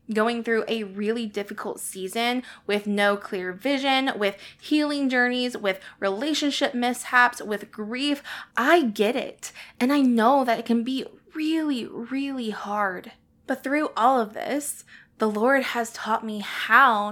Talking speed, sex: 145 wpm, female